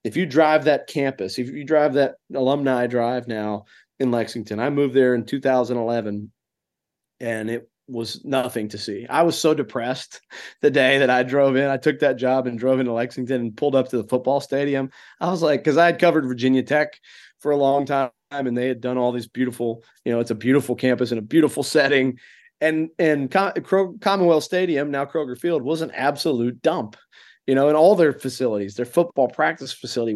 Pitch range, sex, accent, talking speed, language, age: 125-150 Hz, male, American, 200 wpm, English, 30-49